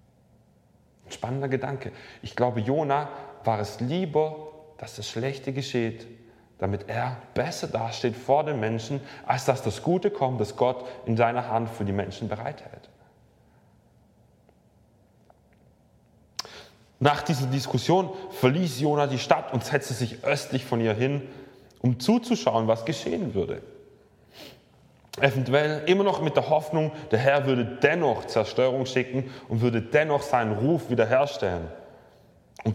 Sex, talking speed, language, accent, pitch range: male, 130 wpm, German, German, 120-155 Hz